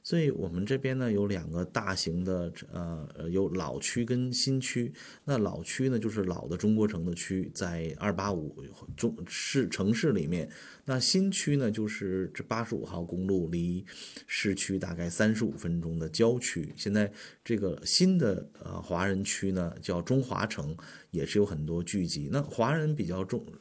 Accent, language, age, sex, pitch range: native, Chinese, 30-49, male, 85-115 Hz